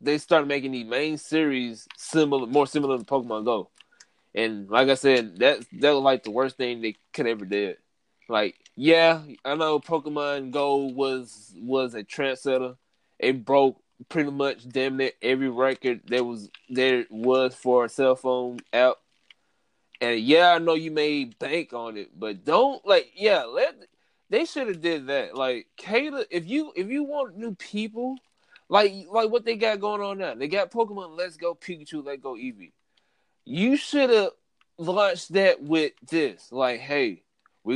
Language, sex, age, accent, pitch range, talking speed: English, male, 20-39, American, 130-195 Hz, 175 wpm